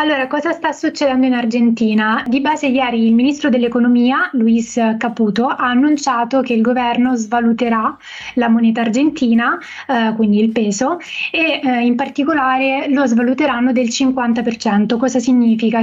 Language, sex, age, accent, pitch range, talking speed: Italian, female, 20-39, native, 230-270 Hz, 140 wpm